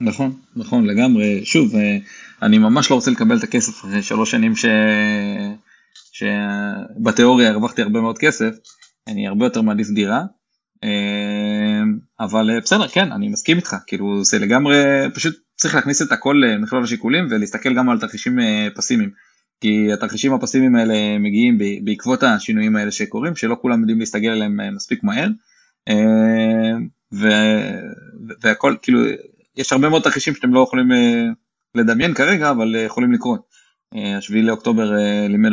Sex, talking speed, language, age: male, 135 wpm, Hebrew, 20-39